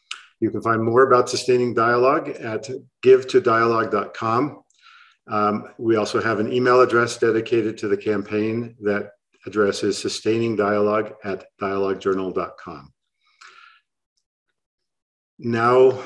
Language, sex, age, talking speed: English, male, 50-69, 100 wpm